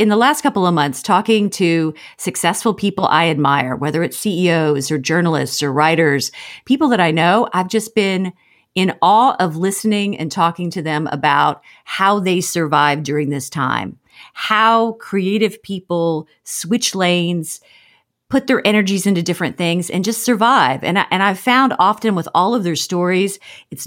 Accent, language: American, English